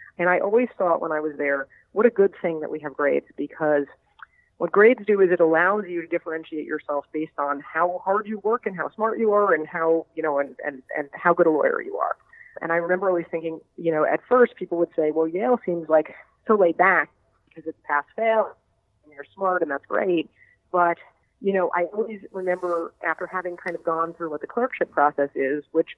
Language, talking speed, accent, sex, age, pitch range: English, 220 wpm, American, female, 30-49, 155-195 Hz